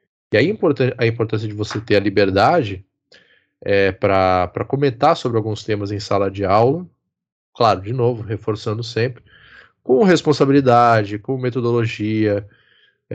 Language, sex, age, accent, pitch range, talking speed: Portuguese, male, 20-39, Brazilian, 105-130 Hz, 125 wpm